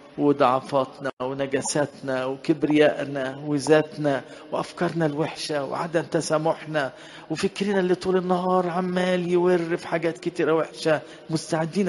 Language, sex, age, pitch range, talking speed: English, male, 50-69, 145-175 Hz, 90 wpm